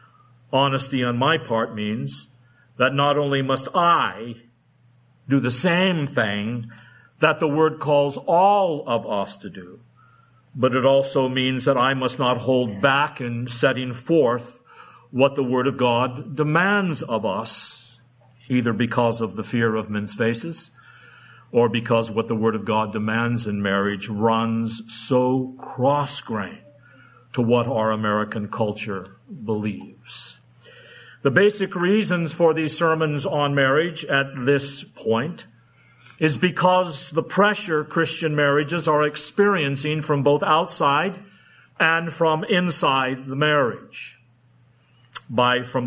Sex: male